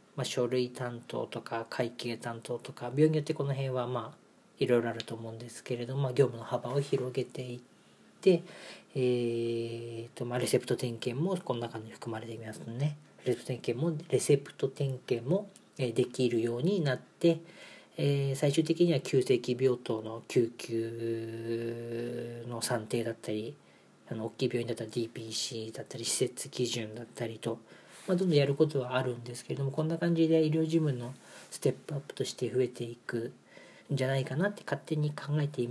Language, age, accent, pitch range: Japanese, 40-59, native, 115-140 Hz